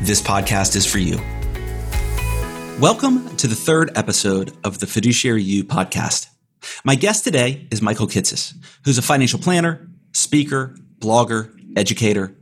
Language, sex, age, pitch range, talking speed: English, male, 40-59, 105-140 Hz, 135 wpm